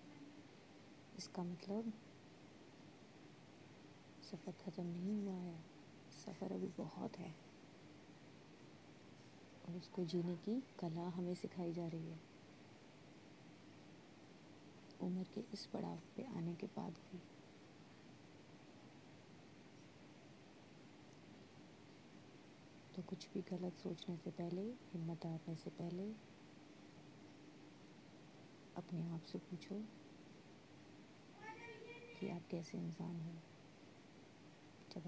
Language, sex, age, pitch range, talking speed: Hindi, female, 30-49, 170-185 Hz, 85 wpm